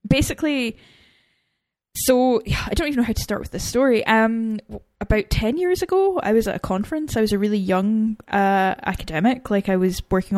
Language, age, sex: English, 10-29, female